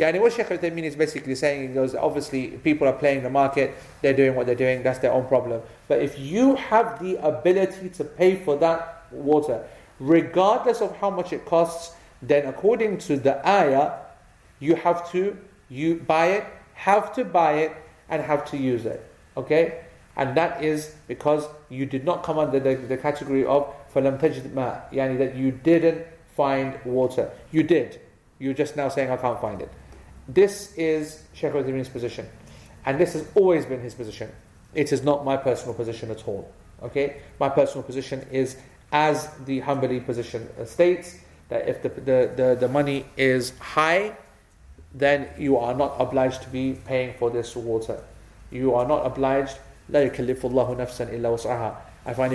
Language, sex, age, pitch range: English, male, 40-59, 130-160 Hz